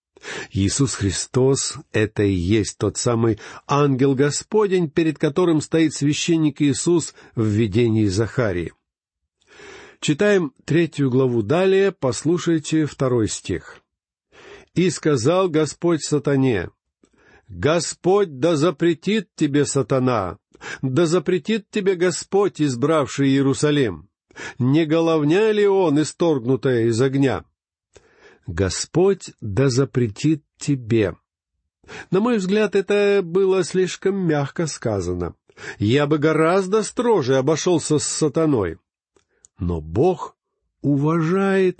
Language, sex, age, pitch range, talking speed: Russian, male, 50-69, 115-170 Hz, 95 wpm